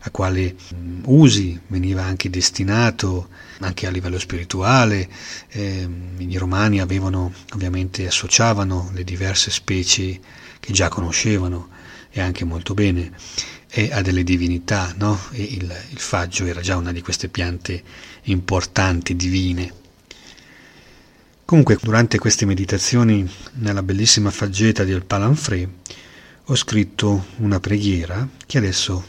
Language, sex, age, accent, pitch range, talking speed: Italian, male, 40-59, native, 90-105 Hz, 120 wpm